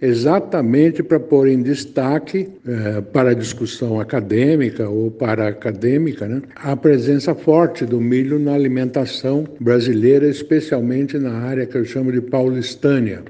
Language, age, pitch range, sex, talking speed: Portuguese, 60-79, 120-145 Hz, male, 130 wpm